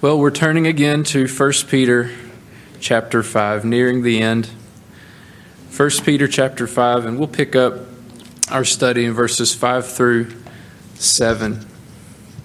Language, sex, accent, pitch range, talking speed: English, male, American, 115-145 Hz, 130 wpm